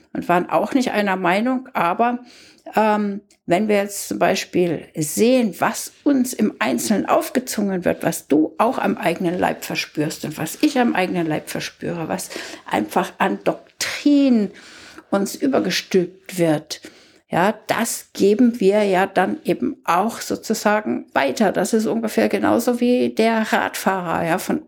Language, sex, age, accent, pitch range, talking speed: German, female, 60-79, German, 185-260 Hz, 145 wpm